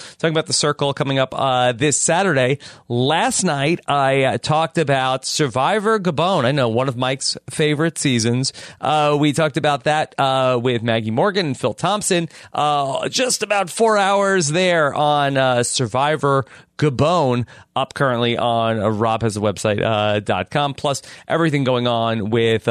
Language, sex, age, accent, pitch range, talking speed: English, male, 30-49, American, 120-165 Hz, 155 wpm